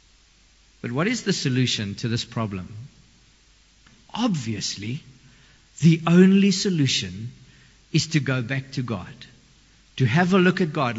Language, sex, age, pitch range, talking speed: English, male, 50-69, 125-185 Hz, 130 wpm